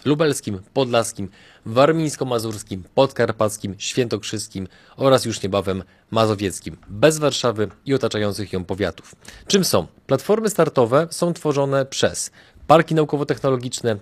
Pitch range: 110-145 Hz